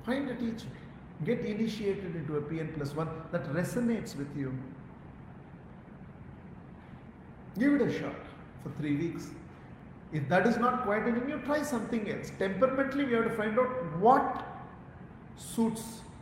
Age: 50-69